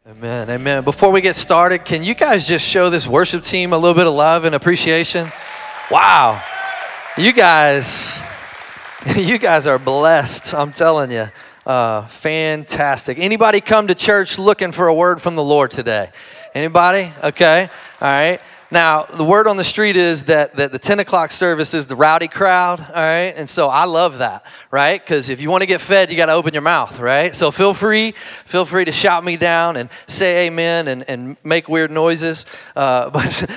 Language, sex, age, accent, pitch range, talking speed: English, male, 30-49, American, 135-170 Hz, 190 wpm